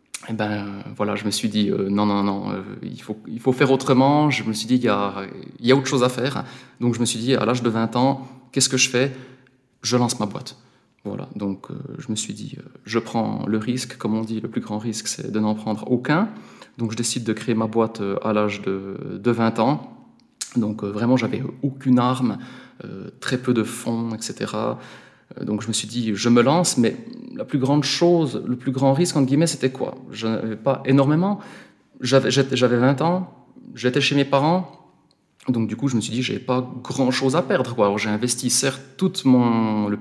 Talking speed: 225 wpm